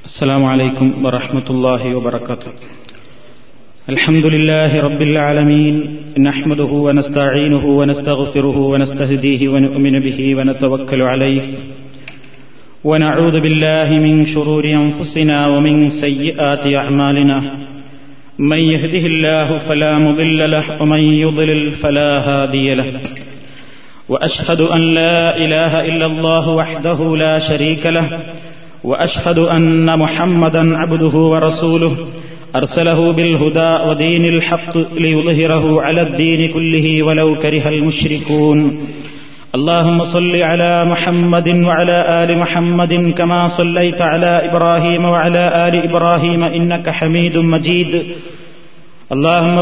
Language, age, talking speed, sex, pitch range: Malayalam, 30-49, 100 wpm, male, 145-170 Hz